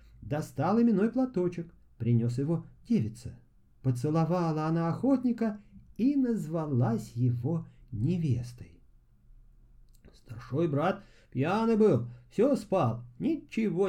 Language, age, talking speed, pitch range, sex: Russian, 50-69, 85 wpm, 120-200 Hz, male